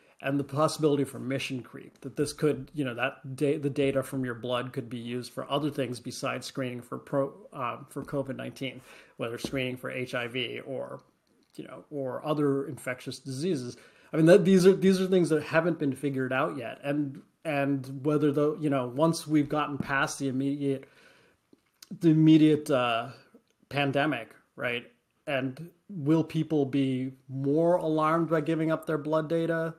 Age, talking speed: 30-49, 170 wpm